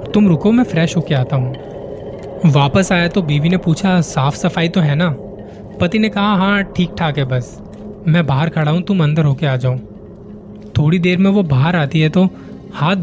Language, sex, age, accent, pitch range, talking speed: Hindi, male, 20-39, native, 135-175 Hz, 205 wpm